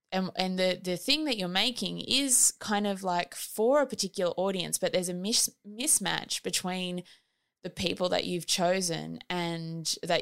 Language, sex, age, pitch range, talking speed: English, female, 20-39, 170-195 Hz, 165 wpm